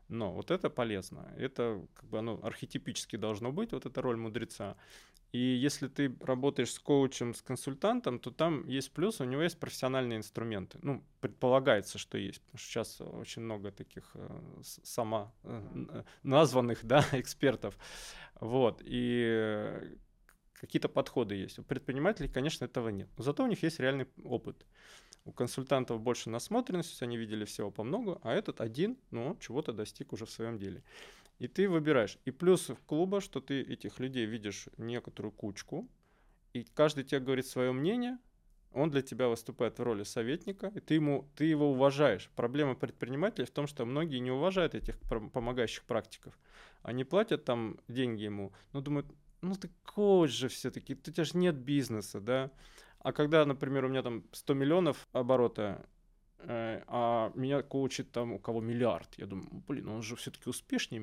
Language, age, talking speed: Russian, 20-39, 165 wpm